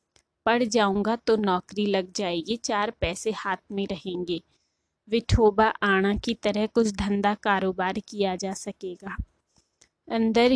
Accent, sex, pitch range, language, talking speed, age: native, female, 200-225 Hz, Hindi, 125 wpm, 20-39